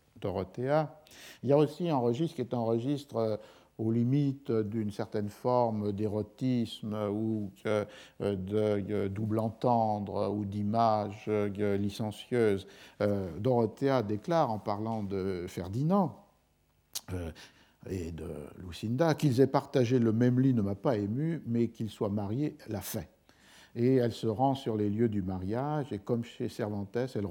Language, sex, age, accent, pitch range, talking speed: French, male, 50-69, French, 95-120 Hz, 140 wpm